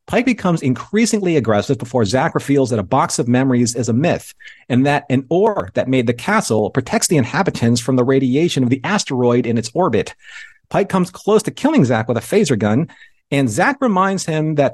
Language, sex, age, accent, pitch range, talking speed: English, male, 40-59, American, 115-150 Hz, 205 wpm